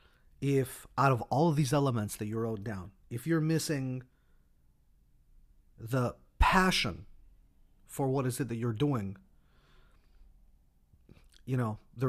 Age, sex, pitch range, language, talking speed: 40-59, male, 95-130 Hz, English, 130 wpm